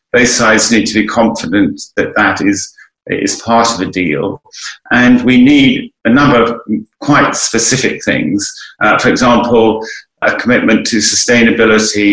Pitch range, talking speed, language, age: 105-140 Hz, 150 wpm, English, 40-59